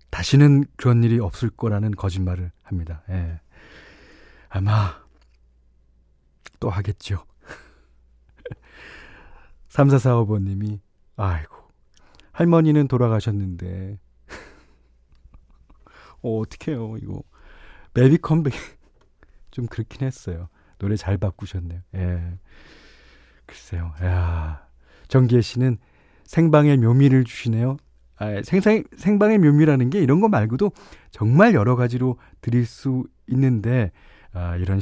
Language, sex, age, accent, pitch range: Korean, male, 40-59, native, 90-130 Hz